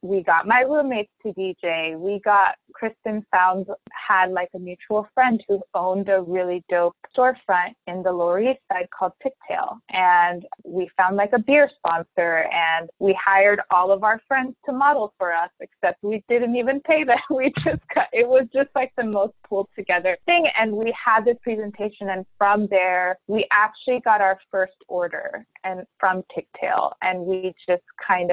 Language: English